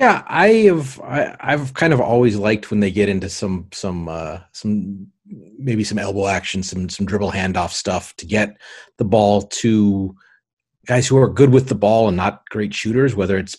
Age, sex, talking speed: 40-59, male, 195 wpm